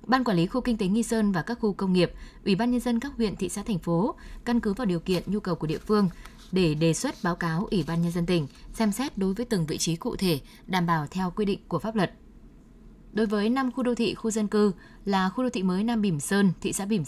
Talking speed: 280 wpm